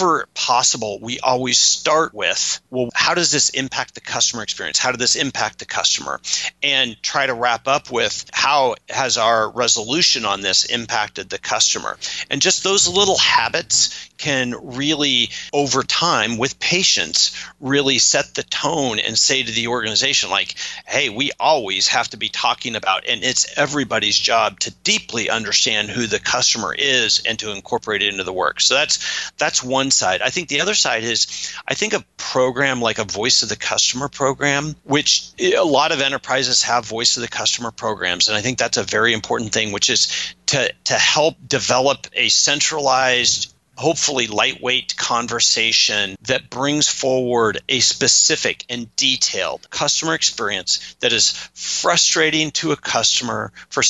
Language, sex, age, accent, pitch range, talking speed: English, male, 40-59, American, 115-140 Hz, 165 wpm